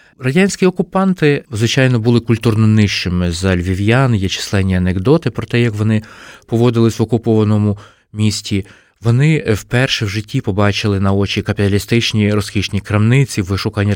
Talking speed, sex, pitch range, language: 130 wpm, male, 100-120 Hz, Ukrainian